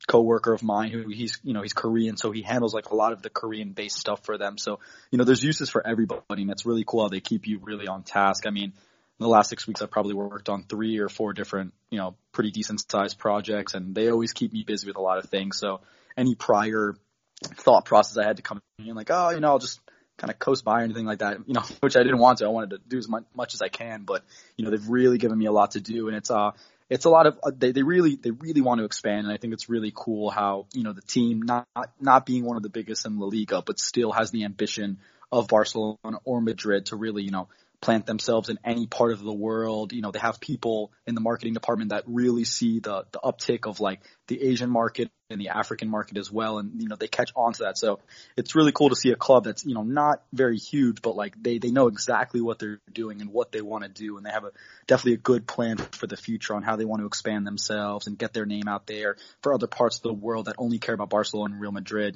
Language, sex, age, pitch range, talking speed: English, male, 20-39, 105-115 Hz, 275 wpm